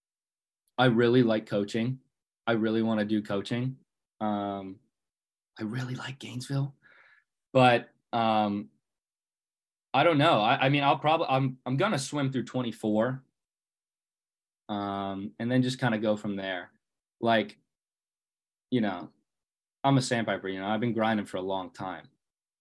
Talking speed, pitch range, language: 150 wpm, 105-125 Hz, English